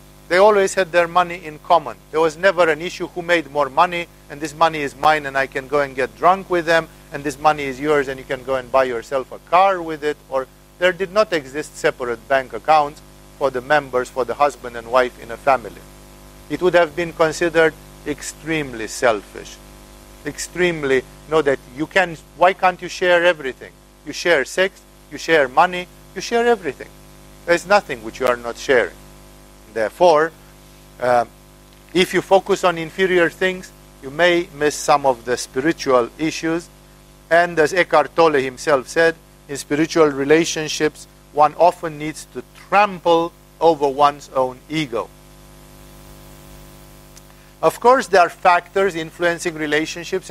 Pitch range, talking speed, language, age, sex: 140-170 Hz, 165 wpm, English, 50-69, male